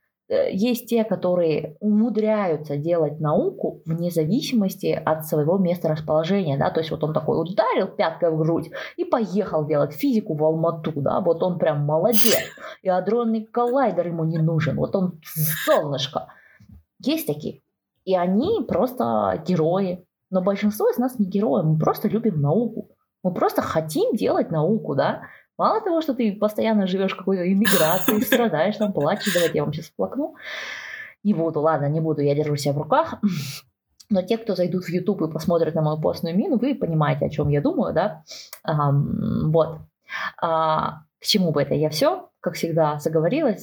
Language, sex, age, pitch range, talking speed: Russian, female, 20-39, 160-215 Hz, 165 wpm